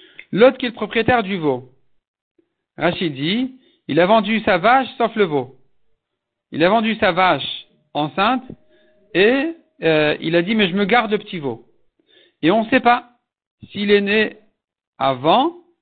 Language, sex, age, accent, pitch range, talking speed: French, male, 60-79, French, 165-245 Hz, 165 wpm